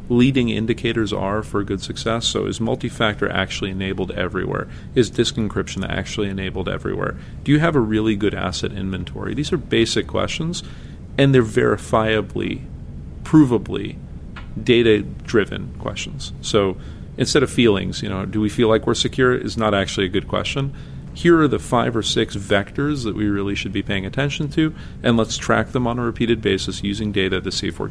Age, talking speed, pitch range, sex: 40-59, 180 wpm, 95-115 Hz, male